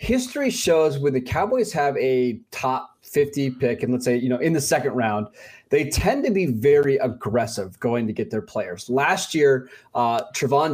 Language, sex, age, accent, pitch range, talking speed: English, male, 20-39, American, 120-150 Hz, 190 wpm